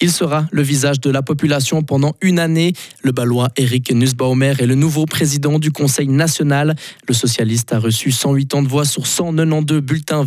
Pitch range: 125-155 Hz